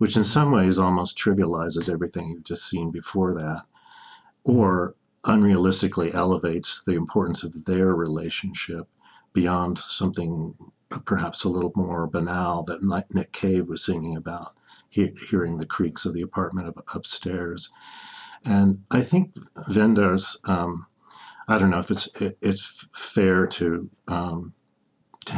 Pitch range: 85-100 Hz